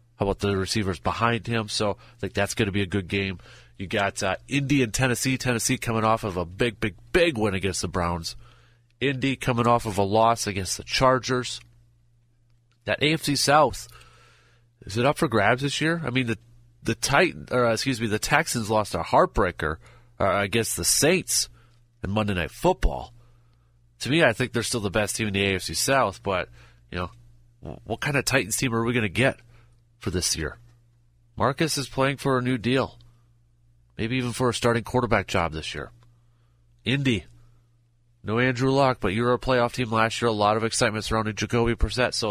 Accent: American